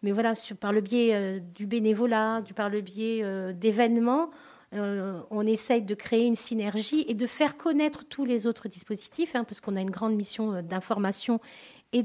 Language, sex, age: French, female, 40-59